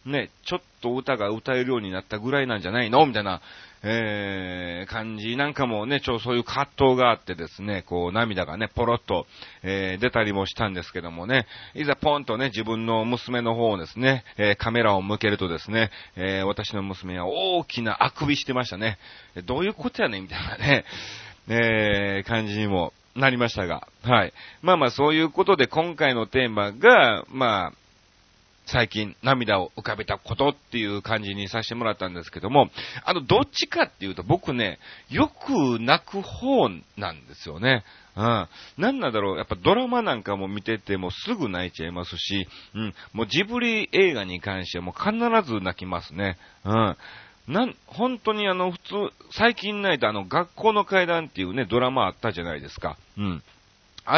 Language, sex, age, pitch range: Japanese, male, 40-59, 95-135 Hz